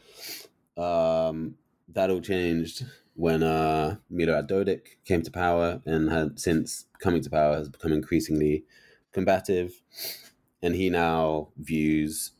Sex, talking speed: male, 120 wpm